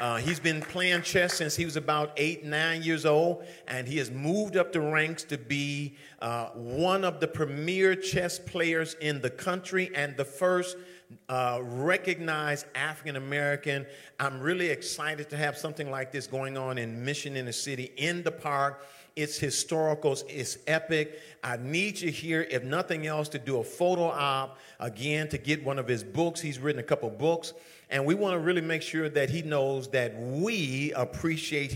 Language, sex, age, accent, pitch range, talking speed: English, male, 50-69, American, 130-155 Hz, 185 wpm